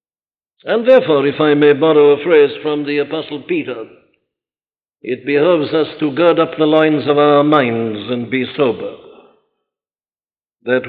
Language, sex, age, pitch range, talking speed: English, male, 60-79, 130-160 Hz, 150 wpm